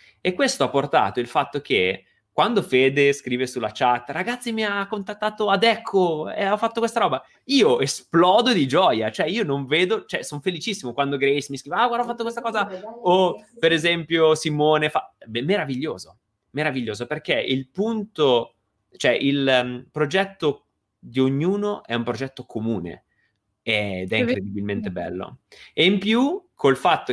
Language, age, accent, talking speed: Italian, 20-39, native, 160 wpm